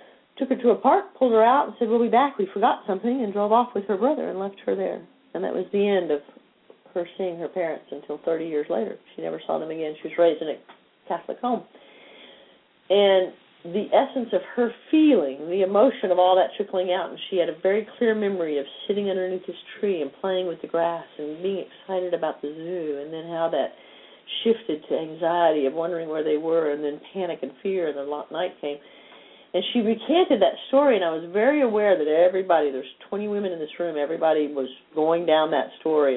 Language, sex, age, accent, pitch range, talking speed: English, female, 50-69, American, 160-225 Hz, 220 wpm